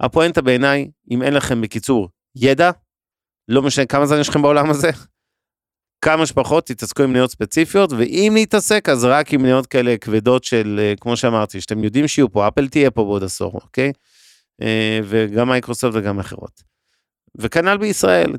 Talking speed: 155 wpm